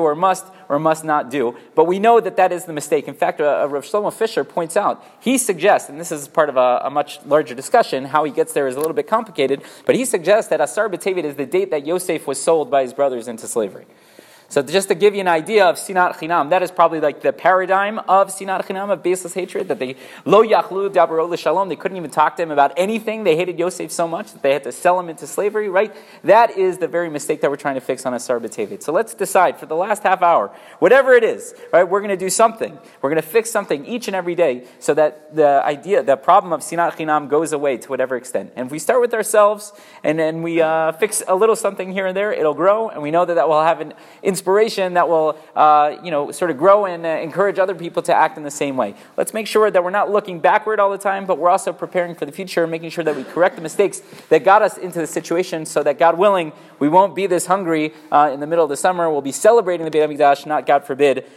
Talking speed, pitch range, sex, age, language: 260 wpm, 150-195 Hz, male, 30-49, English